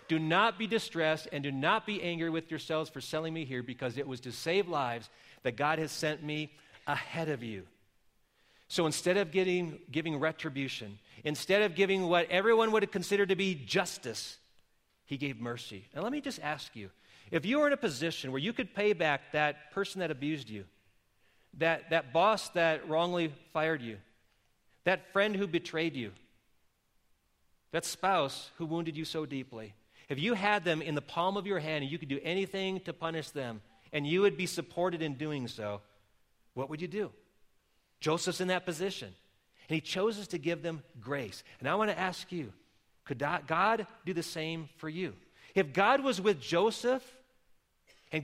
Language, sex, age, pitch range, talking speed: English, male, 40-59, 135-185 Hz, 185 wpm